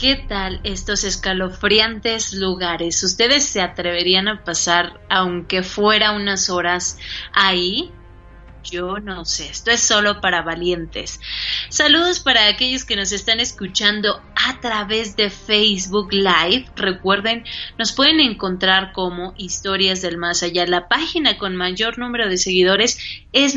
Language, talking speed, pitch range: English, 130 wpm, 185-225 Hz